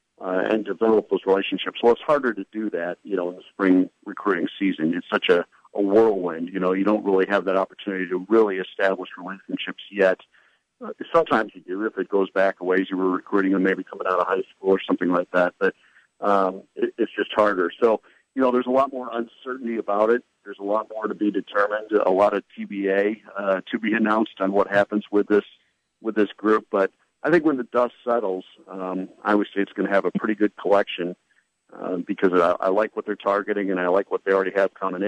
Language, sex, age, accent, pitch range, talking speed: English, male, 50-69, American, 95-110 Hz, 225 wpm